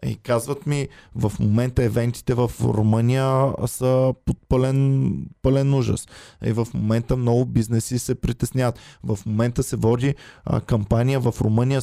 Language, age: Bulgarian, 20-39